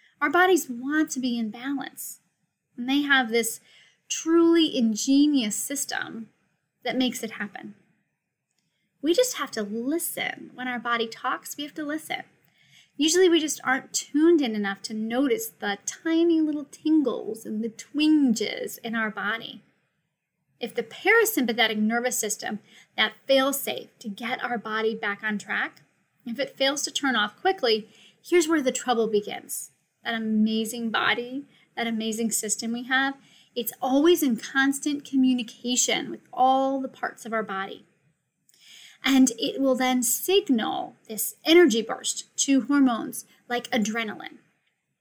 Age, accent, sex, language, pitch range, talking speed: 10-29, American, female, English, 225-290 Hz, 145 wpm